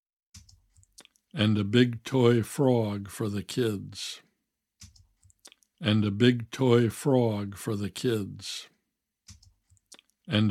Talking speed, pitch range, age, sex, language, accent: 95 wpm, 100-125 Hz, 60-79, male, English, American